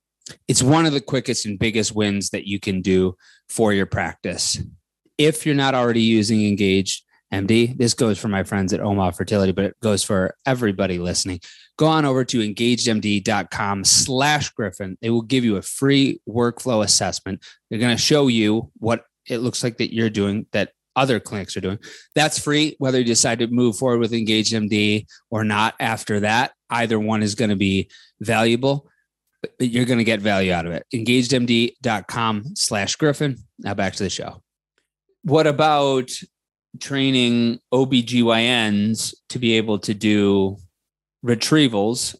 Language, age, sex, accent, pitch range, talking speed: English, 20-39, male, American, 100-120 Hz, 165 wpm